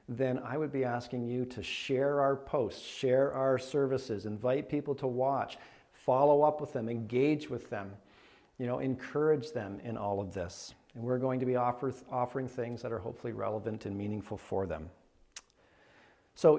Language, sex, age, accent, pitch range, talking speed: English, male, 50-69, American, 120-150 Hz, 175 wpm